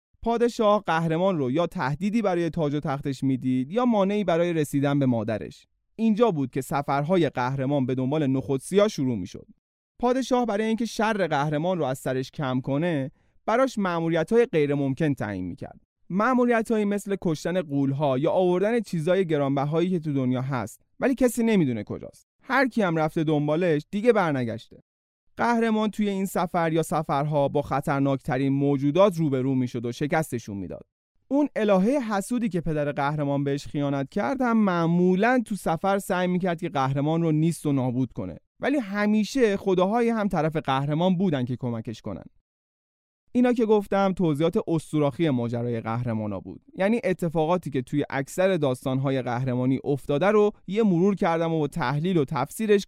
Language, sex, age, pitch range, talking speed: Persian, male, 30-49, 135-200 Hz, 155 wpm